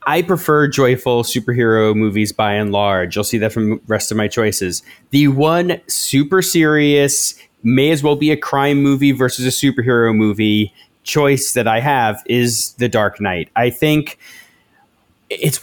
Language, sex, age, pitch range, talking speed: English, male, 30-49, 115-145 Hz, 165 wpm